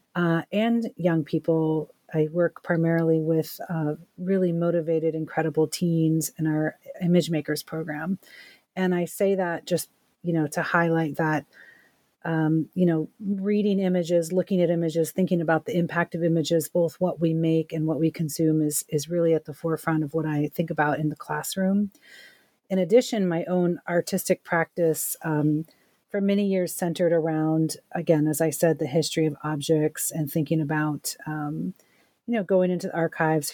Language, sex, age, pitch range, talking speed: English, female, 40-59, 155-175 Hz, 165 wpm